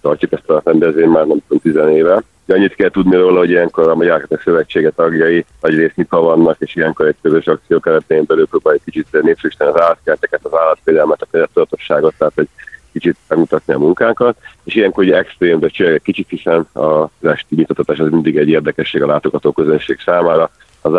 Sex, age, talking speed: male, 40-59, 175 wpm